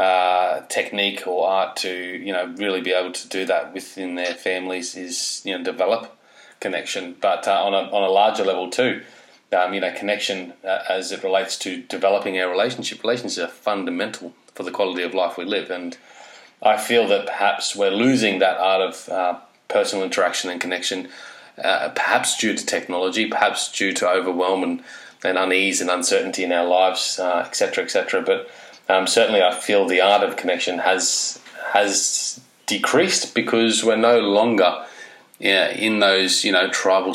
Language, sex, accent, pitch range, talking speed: English, male, Australian, 90-100 Hz, 180 wpm